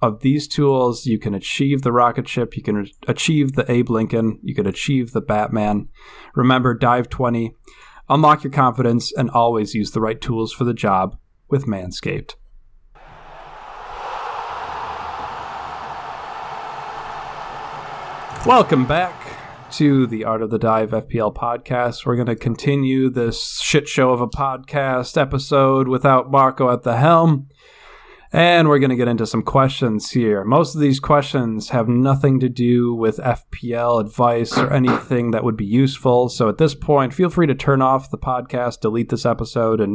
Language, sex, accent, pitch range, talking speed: English, male, American, 115-140 Hz, 155 wpm